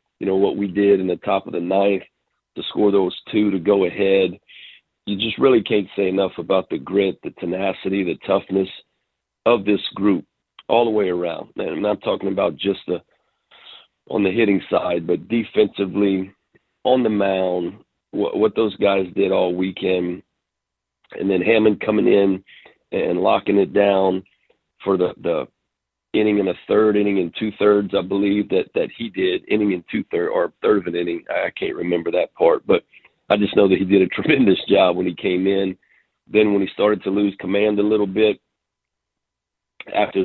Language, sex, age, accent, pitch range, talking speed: English, male, 40-59, American, 95-105 Hz, 185 wpm